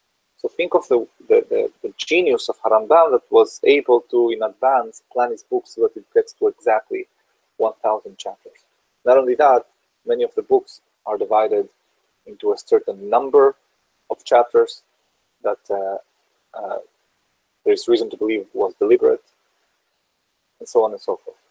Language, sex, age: English, male, 30-49